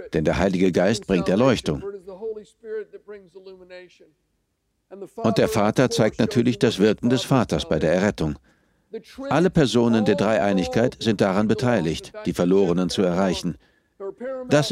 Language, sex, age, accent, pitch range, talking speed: German, male, 60-79, German, 115-195 Hz, 120 wpm